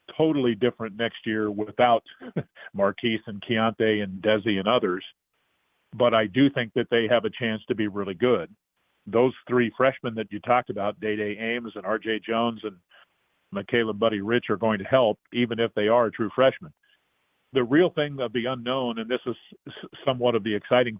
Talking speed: 185 wpm